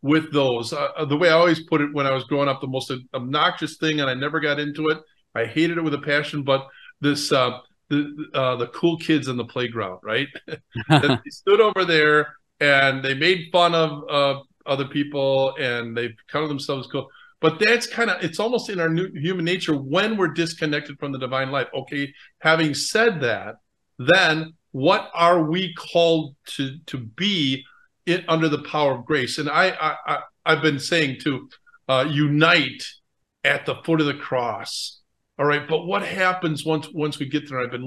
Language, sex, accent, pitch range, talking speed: English, male, American, 135-170 Hz, 200 wpm